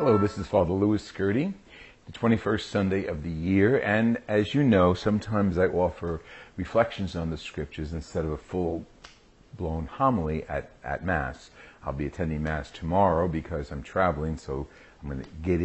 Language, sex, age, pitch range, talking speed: English, male, 50-69, 75-105 Hz, 170 wpm